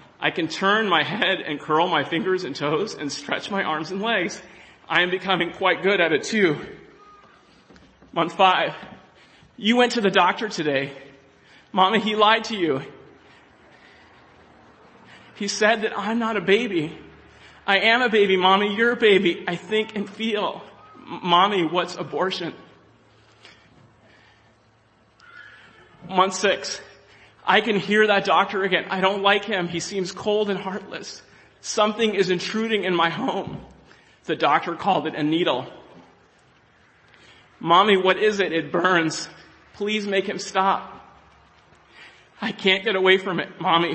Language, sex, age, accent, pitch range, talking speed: English, male, 30-49, American, 165-205 Hz, 145 wpm